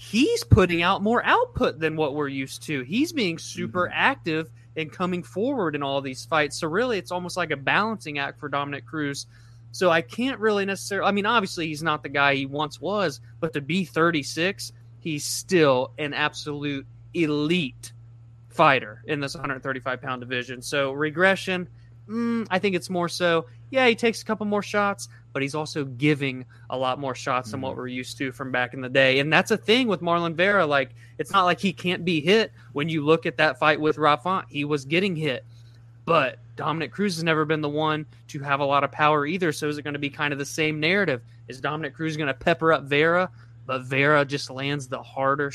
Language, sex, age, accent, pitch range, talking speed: English, male, 20-39, American, 135-165 Hz, 215 wpm